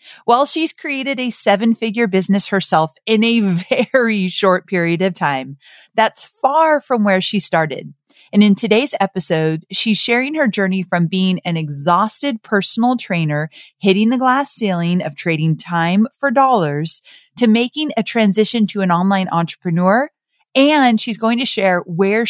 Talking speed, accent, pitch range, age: 155 wpm, American, 175-245 Hz, 30-49